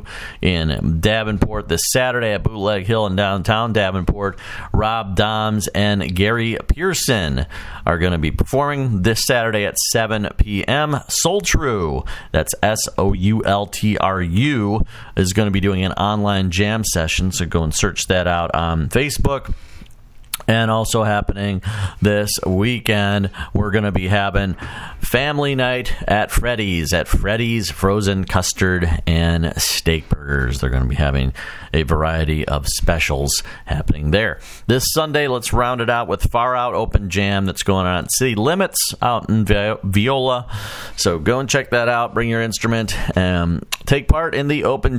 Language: English